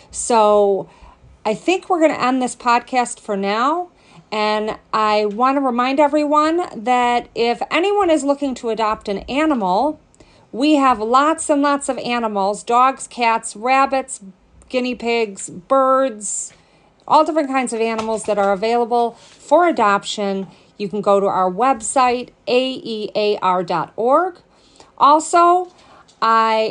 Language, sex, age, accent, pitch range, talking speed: English, female, 40-59, American, 205-260 Hz, 130 wpm